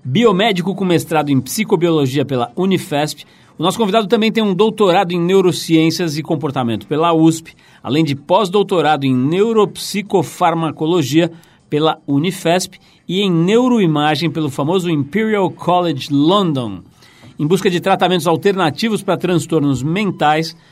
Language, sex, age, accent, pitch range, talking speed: Portuguese, male, 50-69, Brazilian, 150-190 Hz, 125 wpm